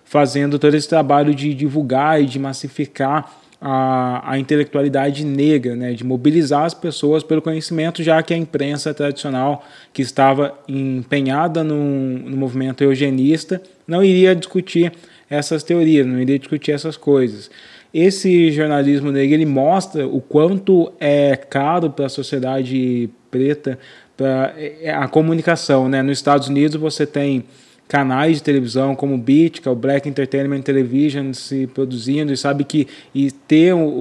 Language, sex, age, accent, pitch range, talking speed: Portuguese, male, 20-39, Brazilian, 135-155 Hz, 140 wpm